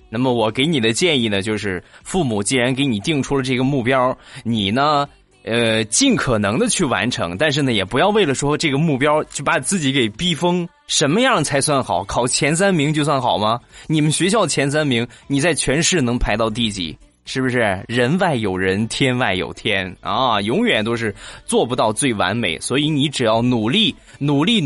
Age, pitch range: 20-39, 110-150 Hz